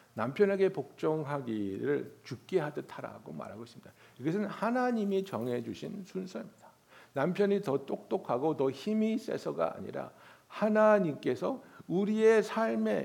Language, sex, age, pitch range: Korean, male, 60-79, 195-245 Hz